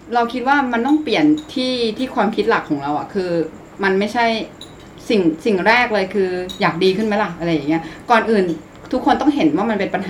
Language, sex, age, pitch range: Thai, female, 20-39, 185-240 Hz